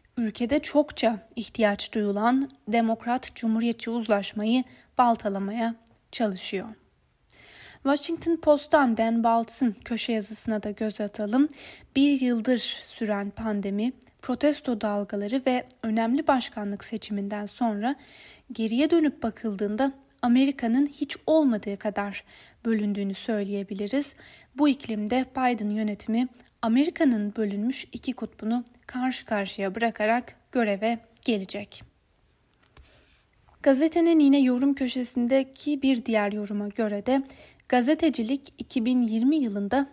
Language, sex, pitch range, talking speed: Turkish, female, 215-265 Hz, 95 wpm